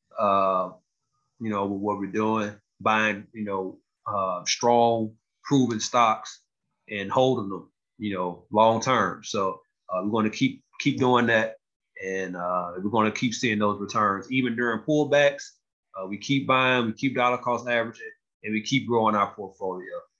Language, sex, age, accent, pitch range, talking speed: English, male, 20-39, American, 100-120 Hz, 170 wpm